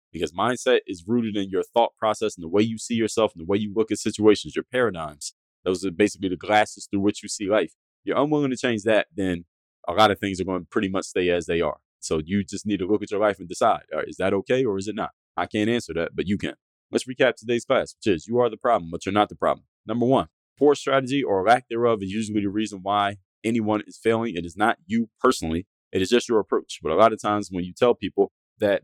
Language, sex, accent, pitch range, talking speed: English, male, American, 90-115 Hz, 270 wpm